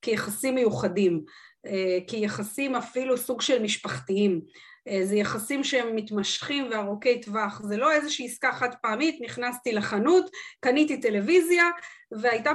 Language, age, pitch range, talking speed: Hebrew, 30-49, 220-290 Hz, 115 wpm